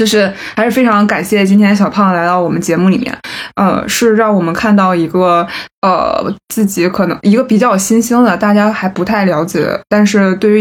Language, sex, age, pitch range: Chinese, female, 20-39, 175-210 Hz